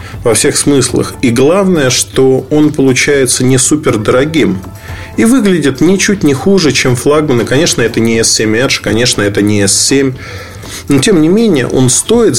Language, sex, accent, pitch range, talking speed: Russian, male, native, 105-145 Hz, 160 wpm